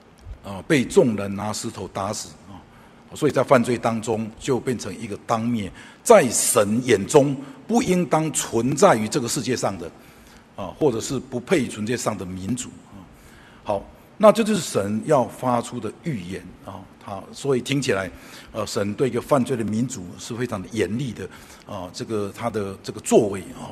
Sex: male